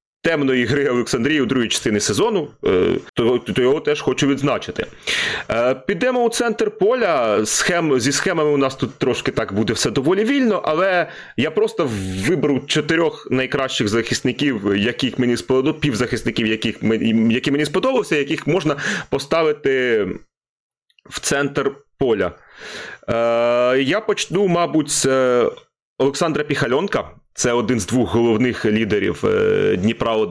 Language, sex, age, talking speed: Ukrainian, male, 30-49, 115 wpm